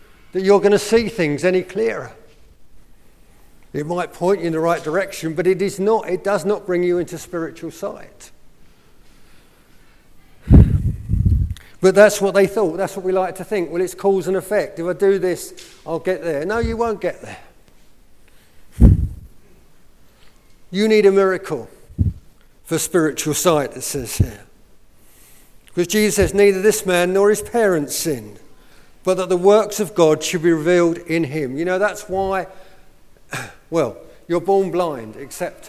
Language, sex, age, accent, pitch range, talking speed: English, male, 50-69, British, 160-205 Hz, 160 wpm